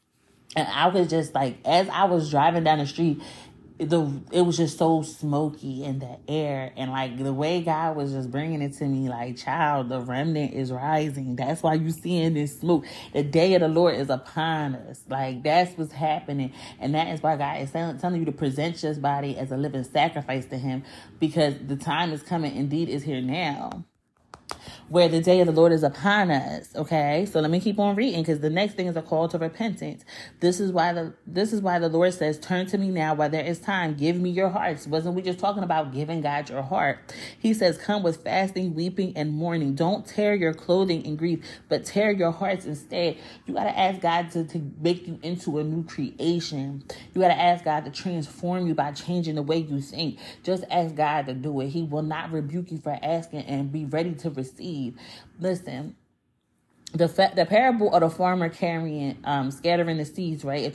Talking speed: 215 wpm